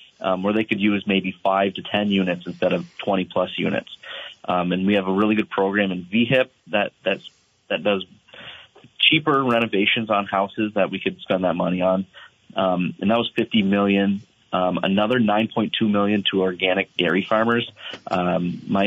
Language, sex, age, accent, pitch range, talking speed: English, male, 30-49, American, 95-110 Hz, 185 wpm